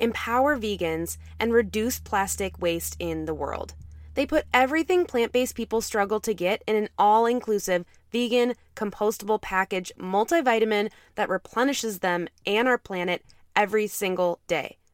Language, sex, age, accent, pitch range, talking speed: English, female, 20-39, American, 180-250 Hz, 135 wpm